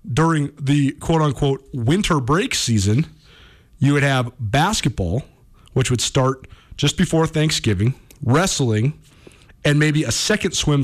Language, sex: English, male